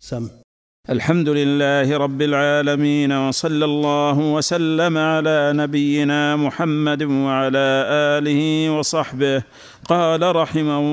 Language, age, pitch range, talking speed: Arabic, 50-69, 145-160 Hz, 80 wpm